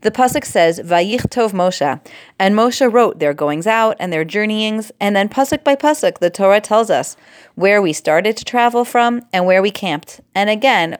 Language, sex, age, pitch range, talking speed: English, female, 30-49, 165-225 Hz, 195 wpm